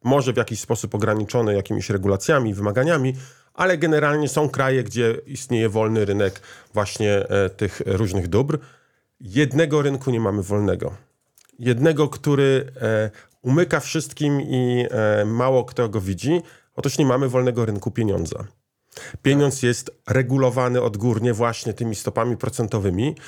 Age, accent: 40-59, native